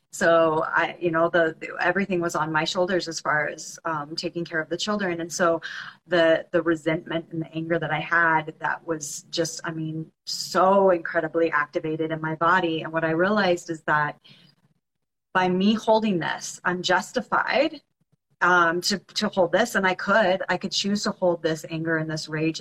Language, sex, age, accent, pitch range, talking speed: English, female, 30-49, American, 160-180 Hz, 190 wpm